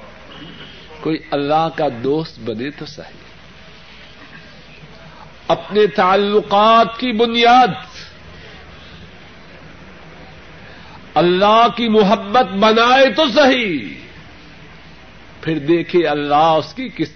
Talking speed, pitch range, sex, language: 80 wpm, 155-235 Hz, male, Urdu